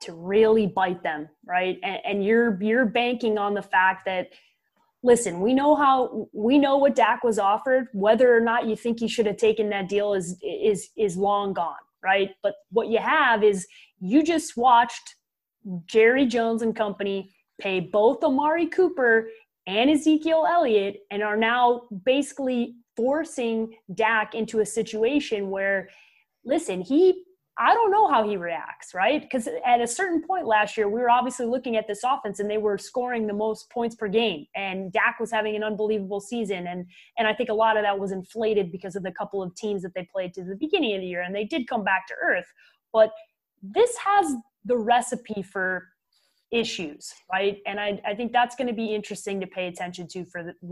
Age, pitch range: 30-49, 195-245 Hz